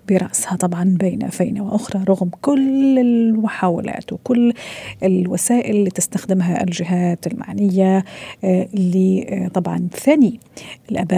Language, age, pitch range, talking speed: Arabic, 40-59, 185-215 Hz, 90 wpm